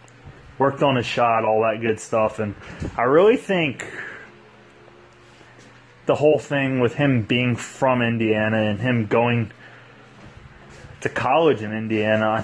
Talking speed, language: 135 wpm, English